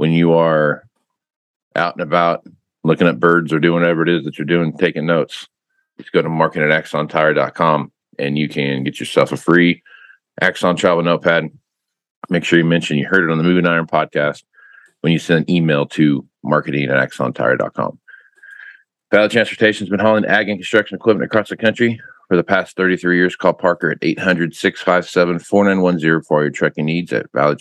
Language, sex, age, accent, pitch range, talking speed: English, male, 40-59, American, 80-90 Hz, 180 wpm